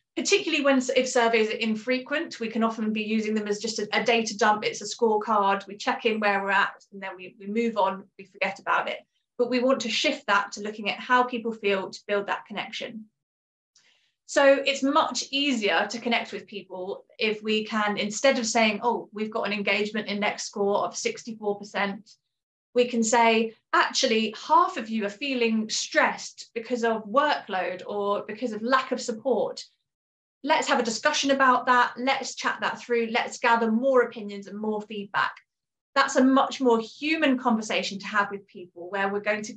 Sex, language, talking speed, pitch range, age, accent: female, English, 190 wpm, 205-250 Hz, 30-49, British